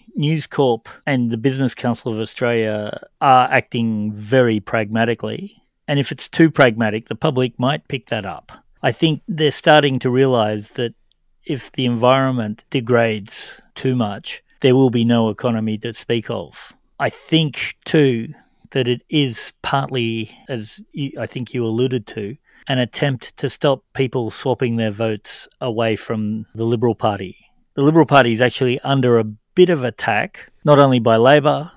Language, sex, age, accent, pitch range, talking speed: English, male, 40-59, Australian, 115-135 Hz, 160 wpm